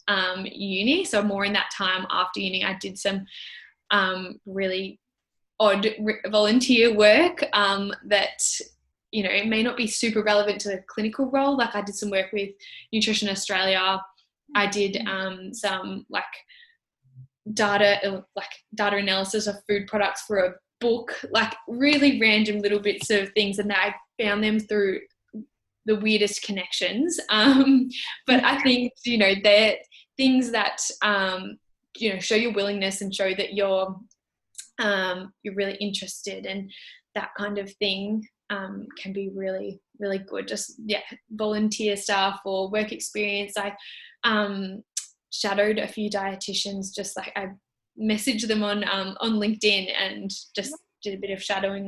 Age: 10-29